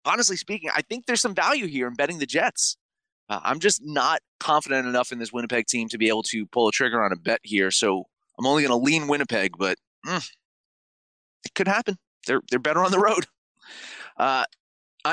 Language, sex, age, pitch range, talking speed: English, male, 30-49, 120-175 Hz, 205 wpm